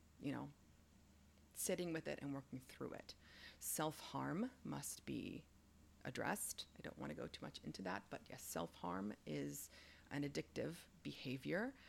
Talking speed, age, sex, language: 145 wpm, 30-49, female, English